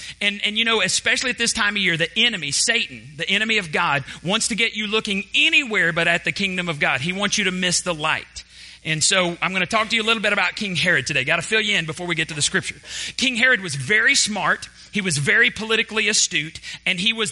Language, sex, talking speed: English, male, 260 wpm